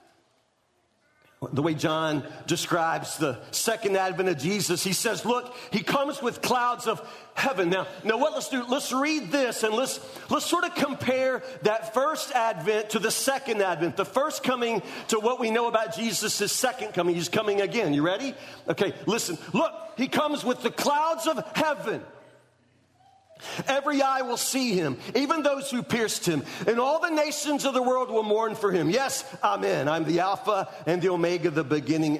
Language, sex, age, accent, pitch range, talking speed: English, male, 40-59, American, 155-255 Hz, 180 wpm